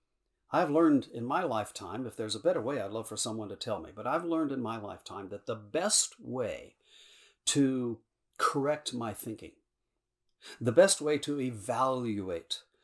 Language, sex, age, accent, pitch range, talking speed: English, male, 50-69, American, 120-195 Hz, 170 wpm